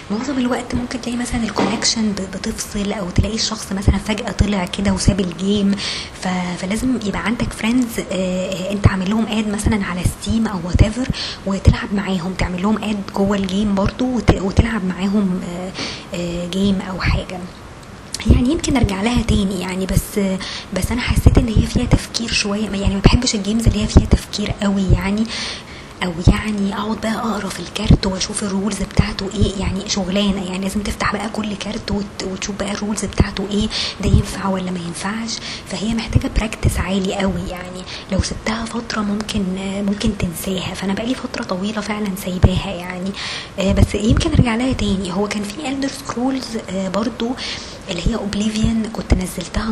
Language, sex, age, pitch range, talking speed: Arabic, male, 20-39, 190-220 Hz, 165 wpm